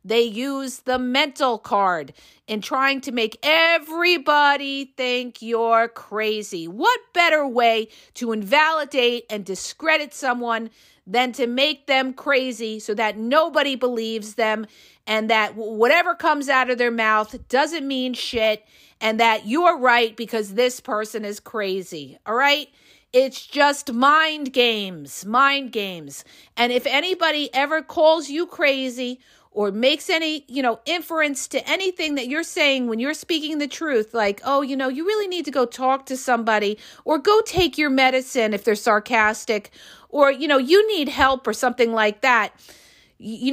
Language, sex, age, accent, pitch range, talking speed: English, female, 50-69, American, 220-290 Hz, 155 wpm